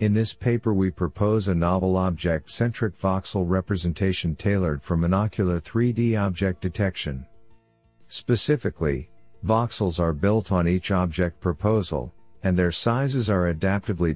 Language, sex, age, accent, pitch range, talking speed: English, male, 50-69, American, 85-105 Hz, 125 wpm